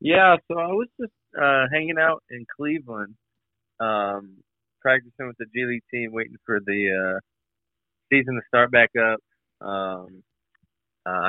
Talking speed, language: 150 wpm, English